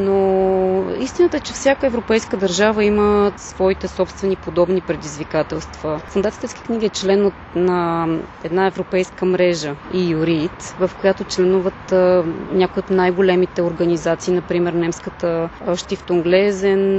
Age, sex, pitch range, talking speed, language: 20-39, female, 175-205 Hz, 125 wpm, Bulgarian